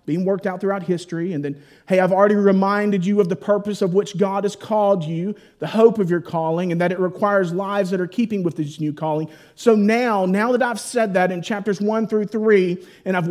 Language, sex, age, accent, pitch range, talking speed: English, male, 40-59, American, 175-220 Hz, 235 wpm